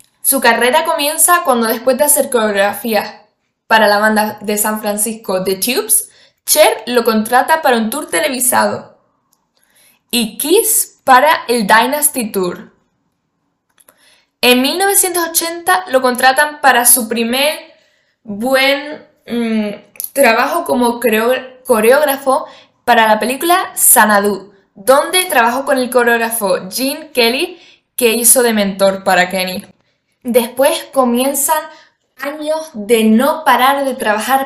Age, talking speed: 10-29, 115 wpm